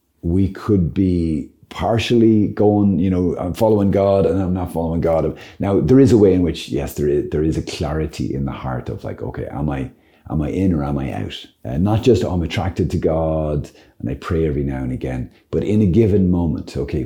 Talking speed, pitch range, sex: 230 wpm, 75-95 Hz, male